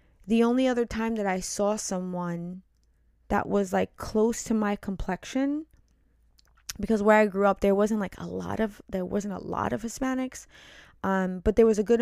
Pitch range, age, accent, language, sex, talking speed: 180-220 Hz, 20-39, American, English, female, 190 wpm